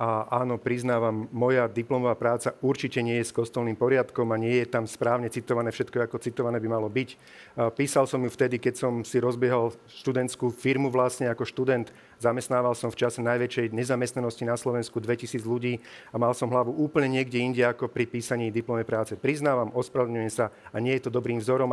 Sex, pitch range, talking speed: male, 120-135 Hz, 190 wpm